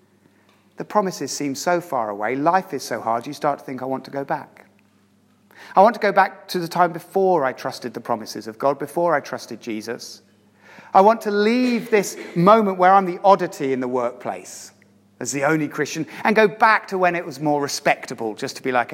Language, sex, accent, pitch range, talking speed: English, male, British, 120-200 Hz, 215 wpm